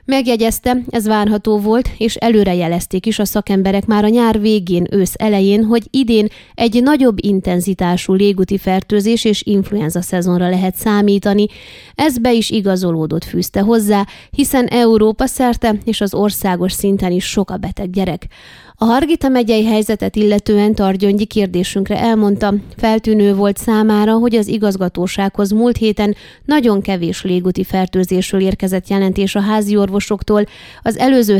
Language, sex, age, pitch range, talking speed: Hungarian, female, 20-39, 195-225 Hz, 140 wpm